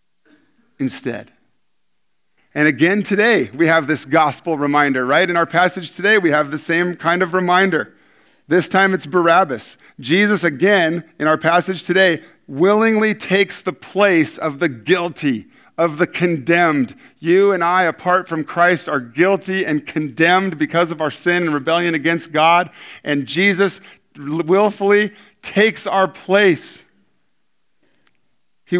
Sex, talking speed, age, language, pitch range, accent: male, 140 wpm, 40-59, English, 145-180 Hz, American